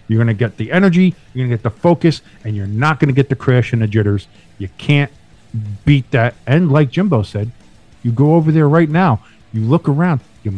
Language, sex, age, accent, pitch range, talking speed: English, male, 50-69, American, 115-165 Hz, 235 wpm